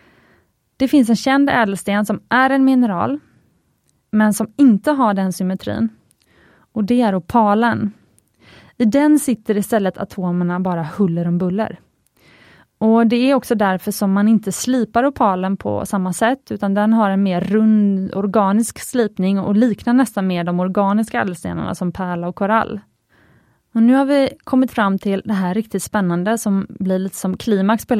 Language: Swedish